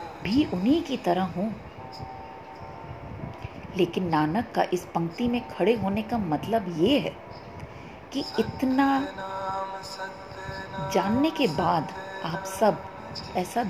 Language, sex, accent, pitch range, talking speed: English, female, Indian, 165-225 Hz, 110 wpm